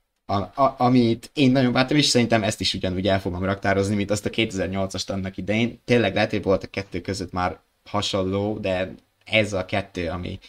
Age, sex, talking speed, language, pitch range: 20-39, male, 200 wpm, Hungarian, 95-110 Hz